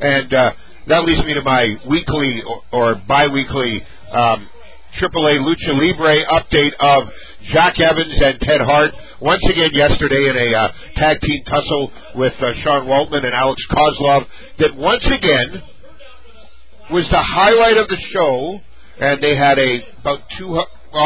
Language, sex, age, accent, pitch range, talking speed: English, male, 50-69, American, 110-150 Hz, 150 wpm